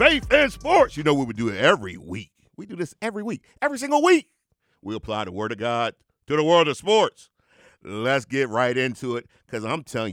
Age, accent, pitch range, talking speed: 50-69, American, 125-195 Hz, 225 wpm